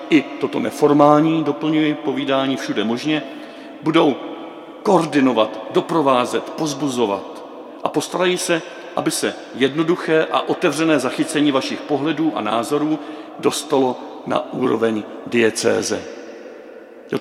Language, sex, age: Czech, male, 50-69